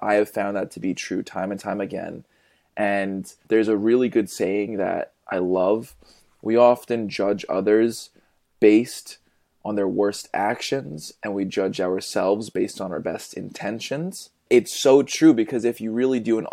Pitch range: 95-115 Hz